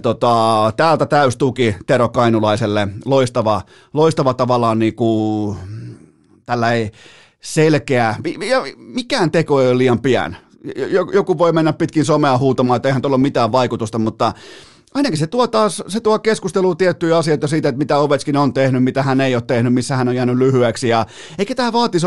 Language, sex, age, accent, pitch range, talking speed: Finnish, male, 30-49, native, 120-155 Hz, 165 wpm